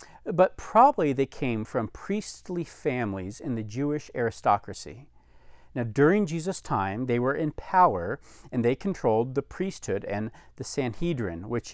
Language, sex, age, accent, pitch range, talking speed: English, male, 40-59, American, 110-160 Hz, 145 wpm